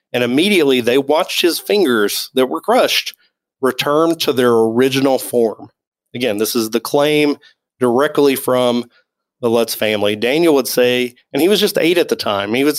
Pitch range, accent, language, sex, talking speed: 115-145 Hz, American, English, male, 175 wpm